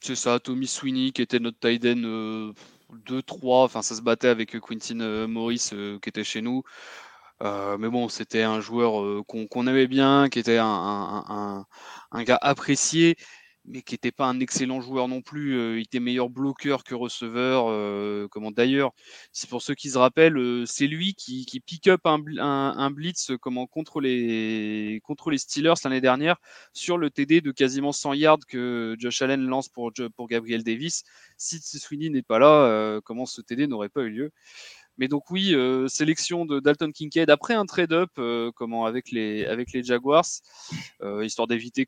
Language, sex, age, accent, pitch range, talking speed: French, male, 20-39, French, 115-145 Hz, 190 wpm